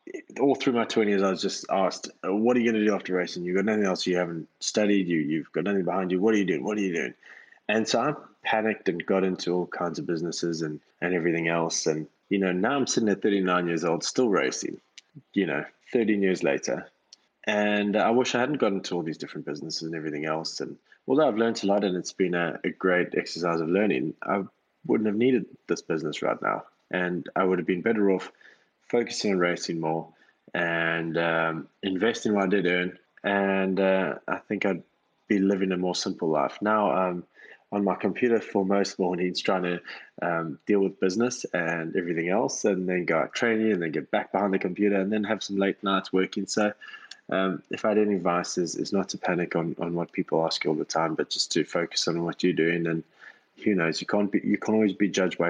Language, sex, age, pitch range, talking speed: English, male, 20-39, 85-105 Hz, 230 wpm